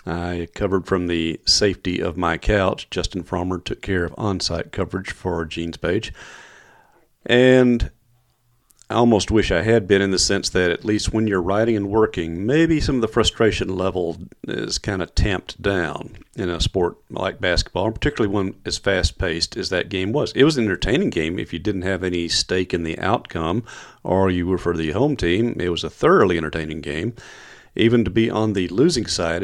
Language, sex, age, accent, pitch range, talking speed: English, male, 40-59, American, 90-110 Hz, 190 wpm